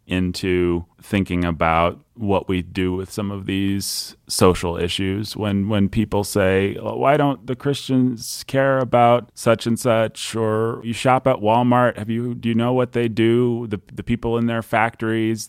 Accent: American